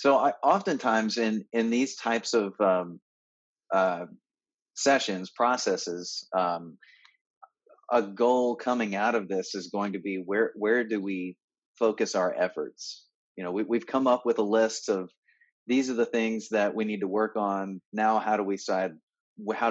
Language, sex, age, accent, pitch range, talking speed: English, male, 30-49, American, 95-115 Hz, 170 wpm